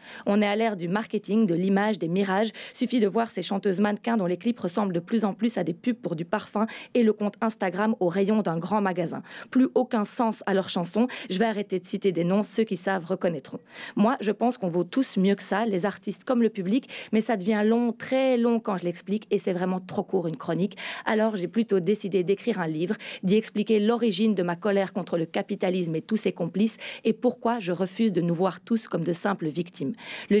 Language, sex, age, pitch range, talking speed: French, female, 20-39, 185-225 Hz, 235 wpm